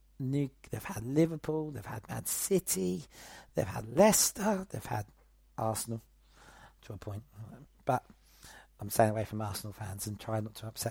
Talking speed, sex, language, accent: 160 wpm, male, English, British